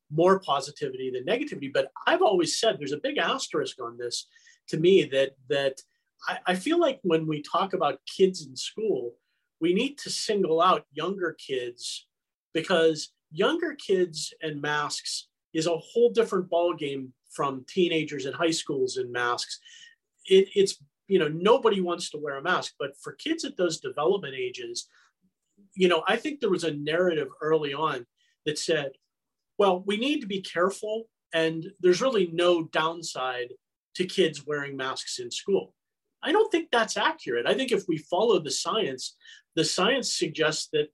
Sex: male